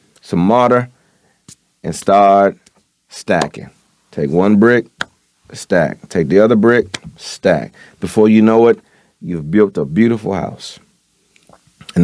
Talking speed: 120 wpm